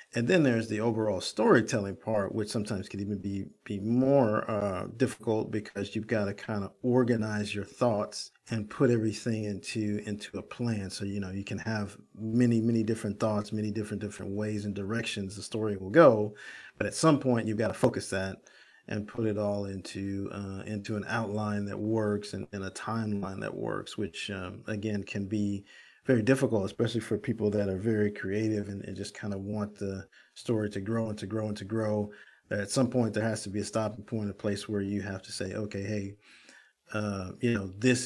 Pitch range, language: 100-115 Hz, English